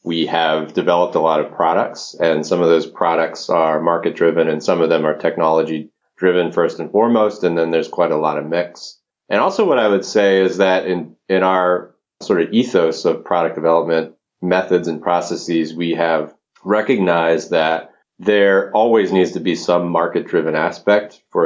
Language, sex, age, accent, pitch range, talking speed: English, male, 30-49, American, 80-95 Hz, 180 wpm